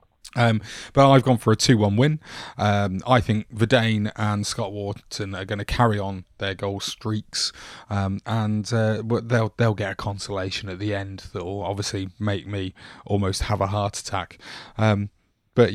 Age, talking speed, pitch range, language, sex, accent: 30-49, 180 wpm, 100-115 Hz, English, male, British